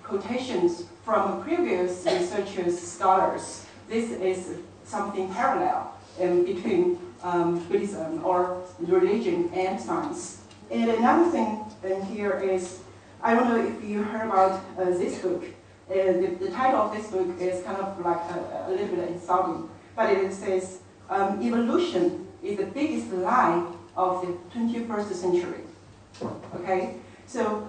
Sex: female